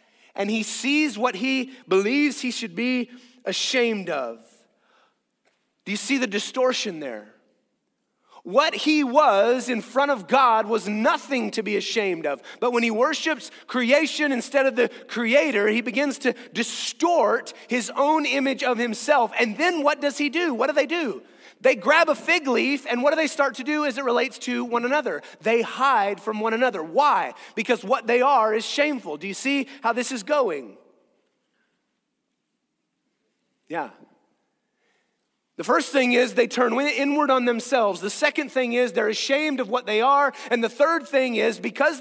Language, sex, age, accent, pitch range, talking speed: English, male, 30-49, American, 230-280 Hz, 175 wpm